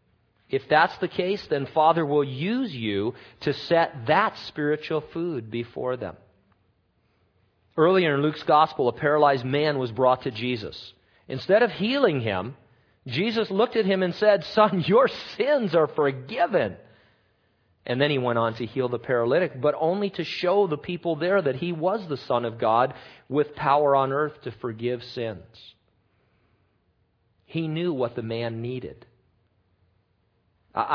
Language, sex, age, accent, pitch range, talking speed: English, male, 40-59, American, 115-150 Hz, 155 wpm